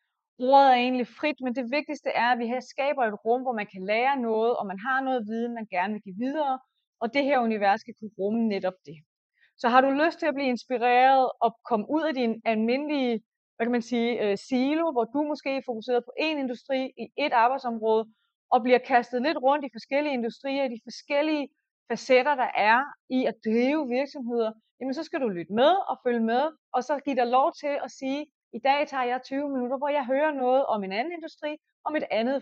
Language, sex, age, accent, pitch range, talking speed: Danish, female, 30-49, native, 220-275 Hz, 225 wpm